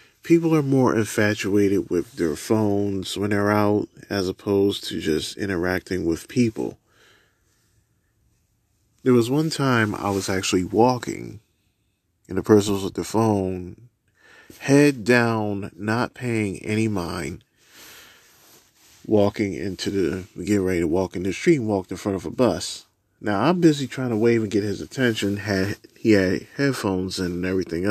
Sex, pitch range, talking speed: male, 100-135 Hz, 155 wpm